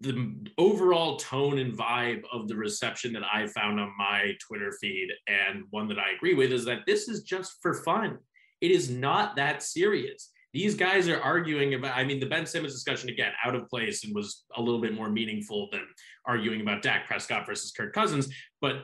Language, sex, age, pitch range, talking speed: English, male, 20-39, 120-160 Hz, 205 wpm